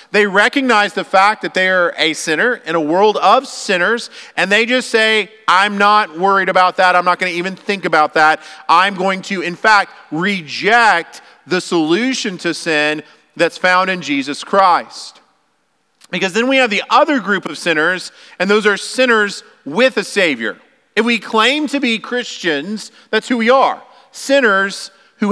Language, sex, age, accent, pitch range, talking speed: English, male, 40-59, American, 185-240 Hz, 175 wpm